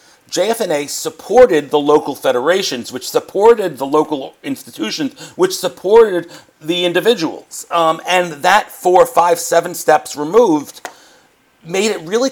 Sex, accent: male, American